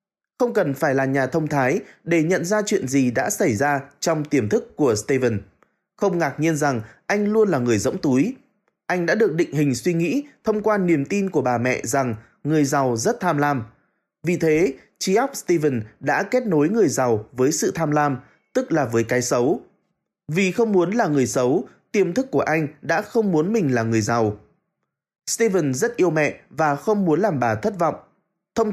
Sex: male